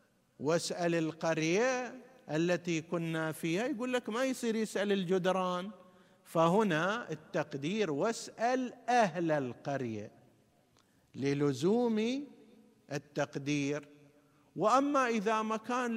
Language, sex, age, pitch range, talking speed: Arabic, male, 50-69, 155-205 Hz, 80 wpm